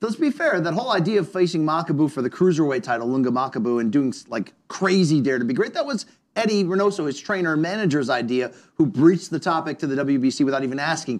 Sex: male